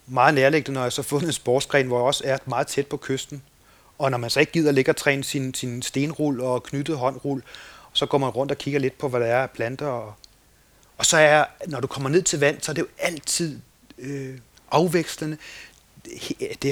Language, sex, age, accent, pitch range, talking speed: Danish, male, 30-49, native, 130-150 Hz, 225 wpm